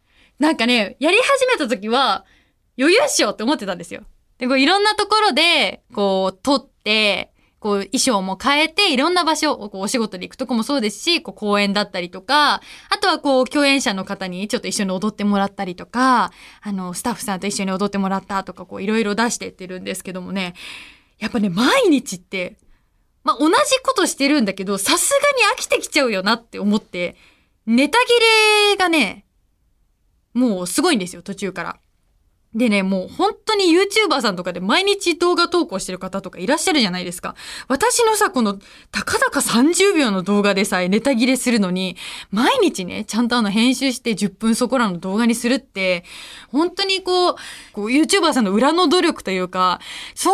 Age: 20-39